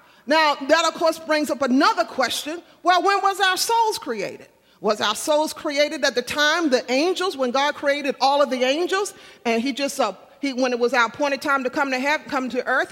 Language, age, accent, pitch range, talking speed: English, 40-59, American, 265-365 Hz, 225 wpm